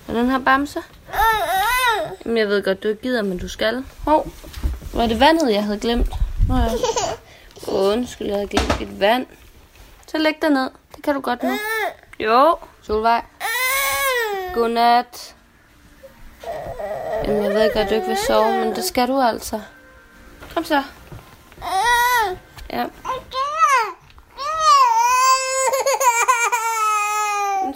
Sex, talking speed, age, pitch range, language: female, 125 wpm, 20-39, 215-340 Hz, Danish